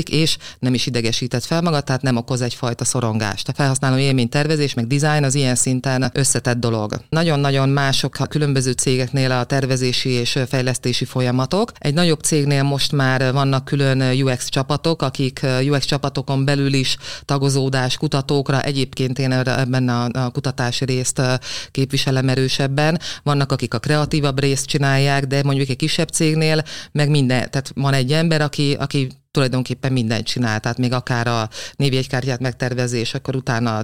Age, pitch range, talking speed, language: 30-49, 125-145 Hz, 150 wpm, Hungarian